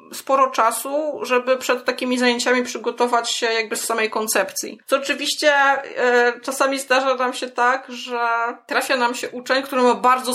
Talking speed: 160 wpm